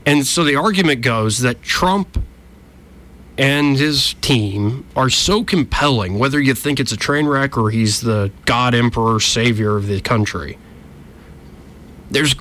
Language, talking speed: English, 145 wpm